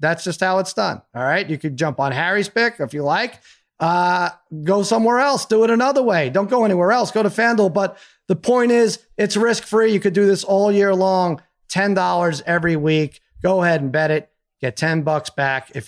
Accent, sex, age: American, male, 30-49